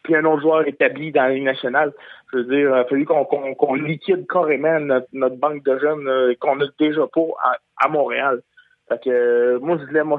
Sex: male